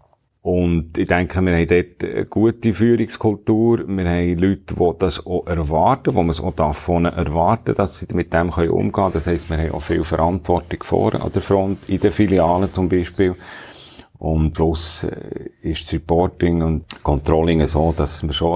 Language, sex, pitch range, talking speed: German, male, 80-90 Hz, 180 wpm